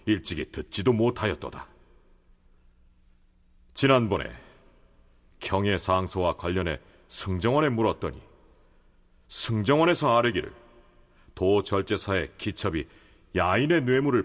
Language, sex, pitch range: Korean, male, 75-115 Hz